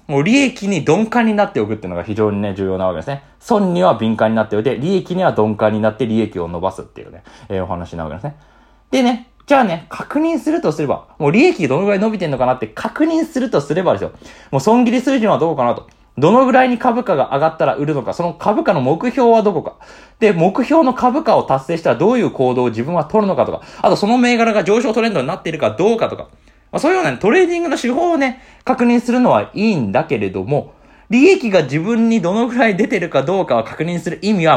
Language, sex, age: Japanese, male, 20-39